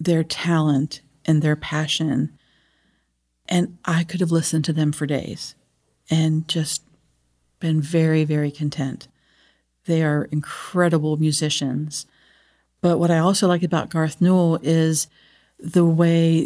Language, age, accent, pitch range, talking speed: English, 50-69, American, 155-185 Hz, 130 wpm